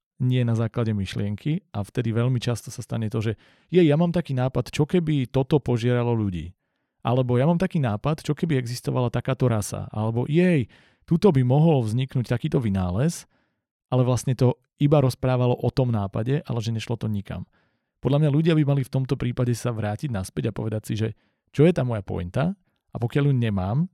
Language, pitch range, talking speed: Slovak, 110-130 Hz, 190 wpm